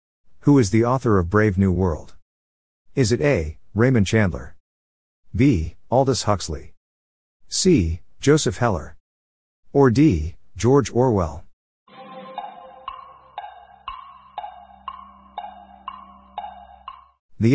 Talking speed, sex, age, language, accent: 80 wpm, male, 50-69, English, American